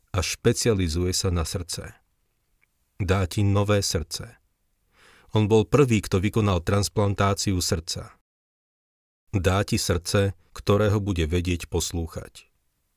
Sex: male